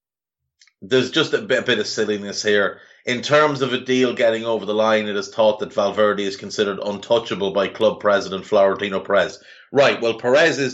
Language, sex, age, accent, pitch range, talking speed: English, male, 30-49, Irish, 110-135 Hz, 185 wpm